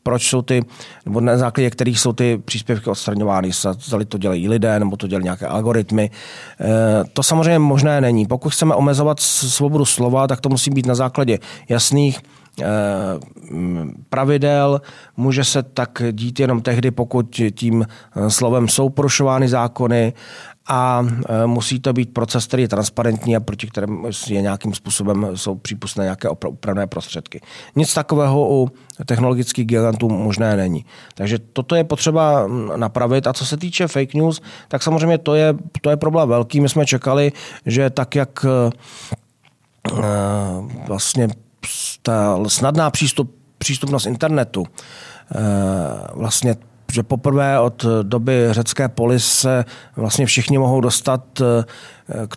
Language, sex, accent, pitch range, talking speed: Czech, male, native, 115-140 Hz, 135 wpm